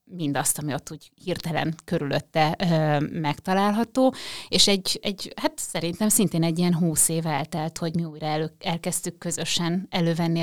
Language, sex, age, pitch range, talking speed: Hungarian, female, 30-49, 155-180 Hz, 150 wpm